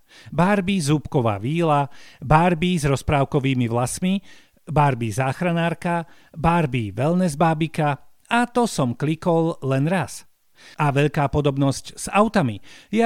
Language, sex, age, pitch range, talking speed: Slovak, male, 50-69, 140-190 Hz, 110 wpm